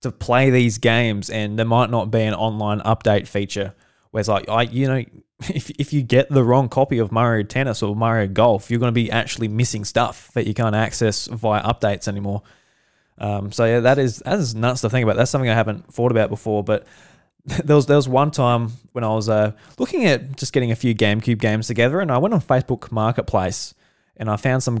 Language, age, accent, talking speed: English, 20-39, Australian, 225 wpm